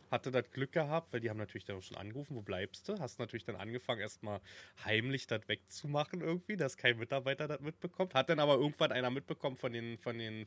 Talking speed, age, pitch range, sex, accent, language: 225 wpm, 20-39, 110-140 Hz, male, German, German